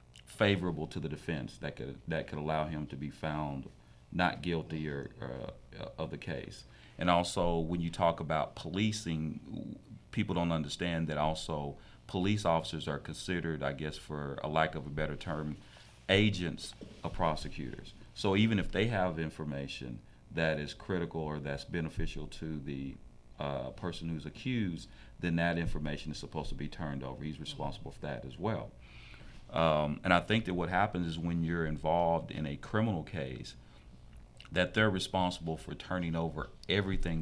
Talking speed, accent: 165 wpm, American